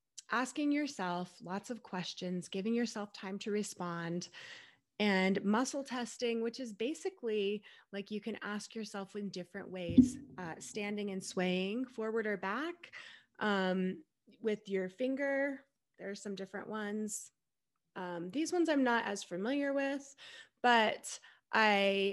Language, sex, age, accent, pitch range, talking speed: English, female, 20-39, American, 185-235 Hz, 135 wpm